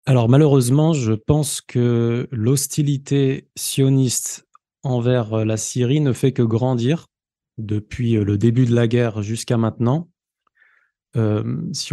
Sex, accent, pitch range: male, French, 115-140 Hz